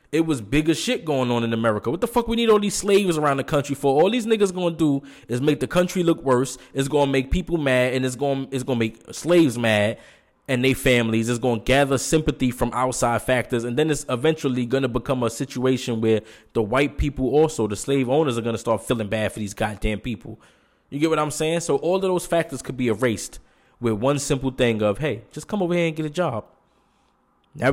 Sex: male